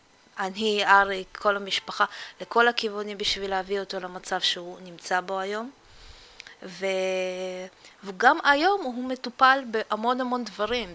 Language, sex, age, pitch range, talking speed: Hebrew, female, 20-39, 185-230 Hz, 120 wpm